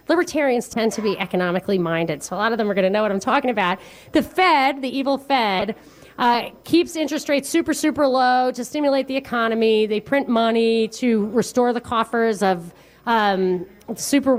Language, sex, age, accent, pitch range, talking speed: English, female, 30-49, American, 215-275 Hz, 185 wpm